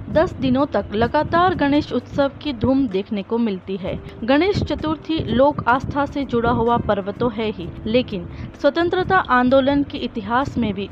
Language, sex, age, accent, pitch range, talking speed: Hindi, female, 20-39, native, 225-300 Hz, 165 wpm